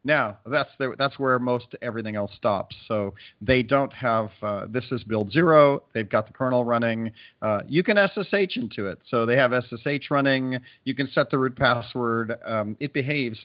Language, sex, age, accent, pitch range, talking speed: English, male, 40-59, American, 100-120 Hz, 190 wpm